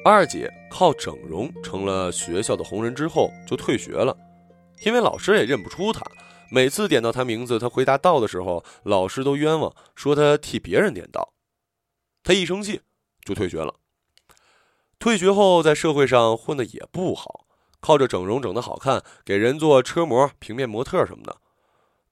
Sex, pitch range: male, 110-170 Hz